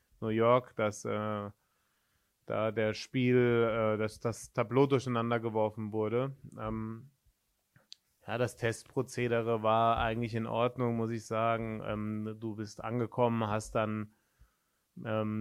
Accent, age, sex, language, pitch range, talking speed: German, 20-39, male, German, 110-125 Hz, 125 wpm